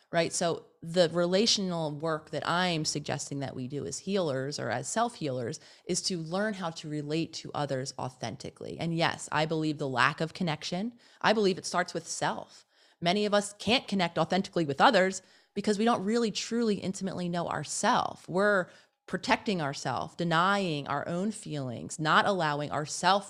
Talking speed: 170 wpm